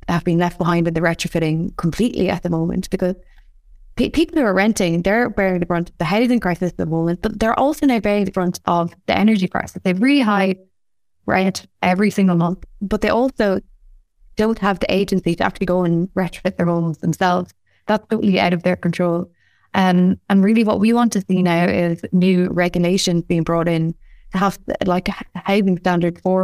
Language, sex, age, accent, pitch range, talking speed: English, female, 20-39, Irish, 170-190 Hz, 200 wpm